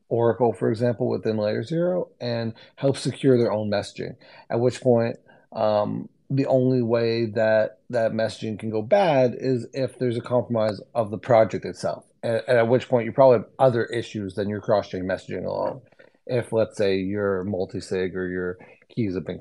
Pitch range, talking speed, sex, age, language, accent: 110-135 Hz, 180 wpm, male, 30-49, English, American